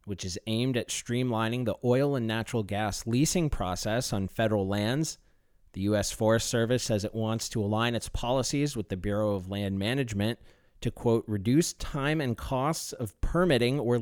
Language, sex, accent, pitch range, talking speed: English, male, American, 100-125 Hz, 175 wpm